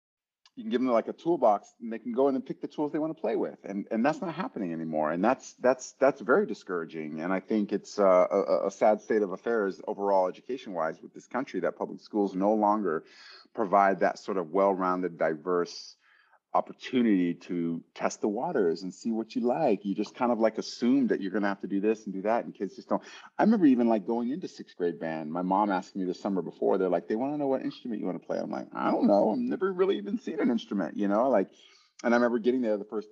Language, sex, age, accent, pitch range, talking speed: English, male, 30-49, American, 95-130 Hz, 255 wpm